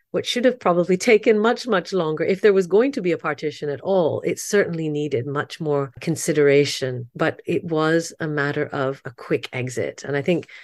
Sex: female